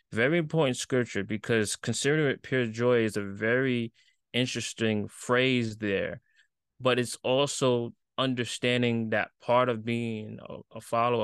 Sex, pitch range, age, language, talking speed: male, 110-130 Hz, 20-39, English, 135 wpm